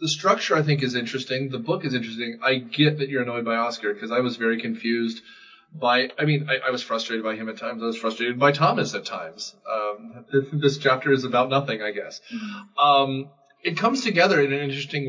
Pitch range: 125-160 Hz